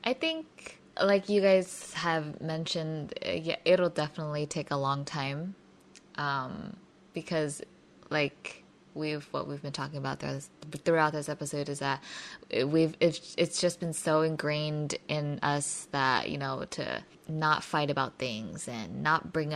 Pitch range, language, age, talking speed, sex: 145-170 Hz, English, 20-39, 145 wpm, female